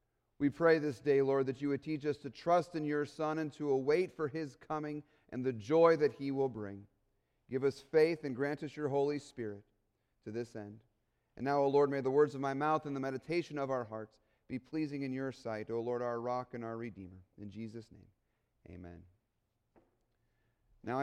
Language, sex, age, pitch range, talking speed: English, male, 40-59, 130-215 Hz, 210 wpm